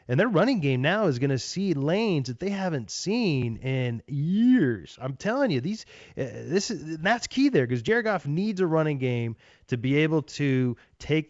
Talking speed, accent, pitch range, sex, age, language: 200 wpm, American, 130-205 Hz, male, 30-49, English